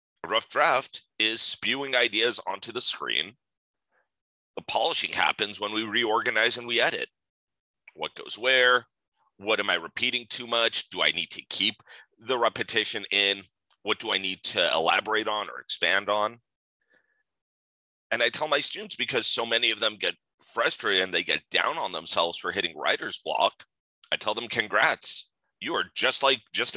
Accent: American